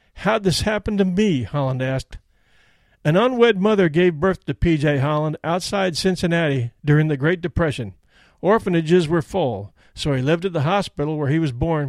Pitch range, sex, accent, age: 135-185 Hz, male, American, 50-69